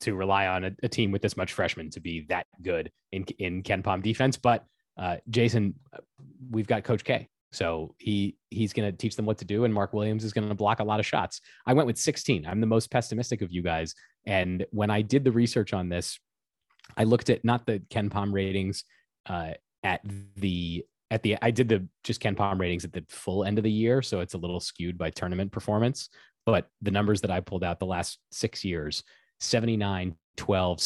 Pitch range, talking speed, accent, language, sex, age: 90-110 Hz, 220 wpm, American, English, male, 20-39